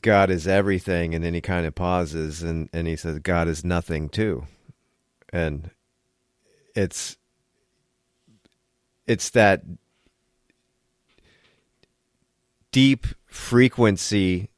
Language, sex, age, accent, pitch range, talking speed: English, male, 40-59, American, 90-125 Hz, 95 wpm